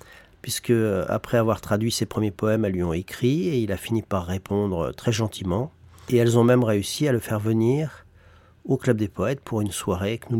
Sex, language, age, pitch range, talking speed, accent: male, French, 40-59, 100-120 Hz, 215 wpm, French